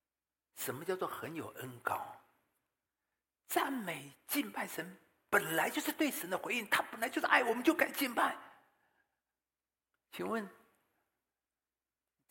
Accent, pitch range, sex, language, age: native, 180-265 Hz, male, Chinese, 50-69